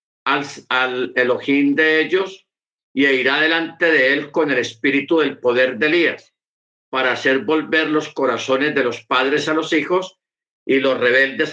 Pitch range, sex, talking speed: 130-185 Hz, male, 160 wpm